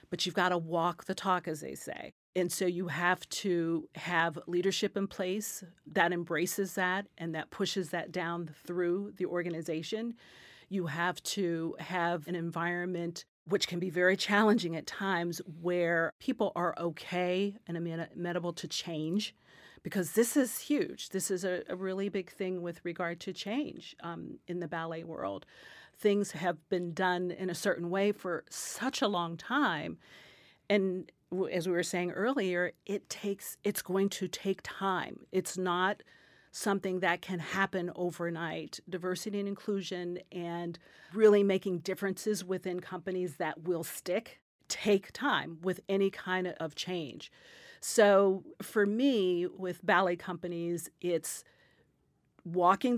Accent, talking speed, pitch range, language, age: American, 145 wpm, 175-195 Hz, English, 40-59